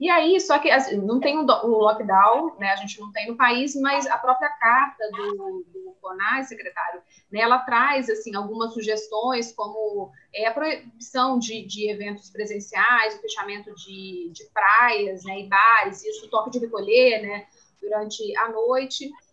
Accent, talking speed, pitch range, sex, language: Brazilian, 160 wpm, 210-275 Hz, female, Portuguese